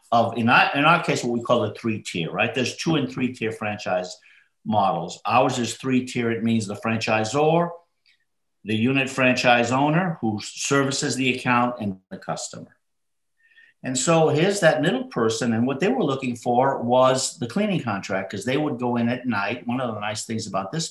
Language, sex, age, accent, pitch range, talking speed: English, male, 50-69, American, 105-130 Hz, 190 wpm